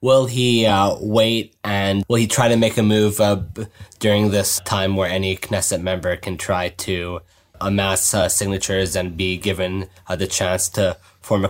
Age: 20-39